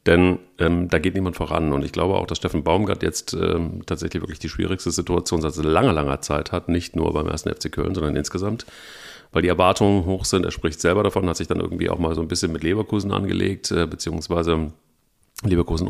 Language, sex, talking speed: German, male, 220 wpm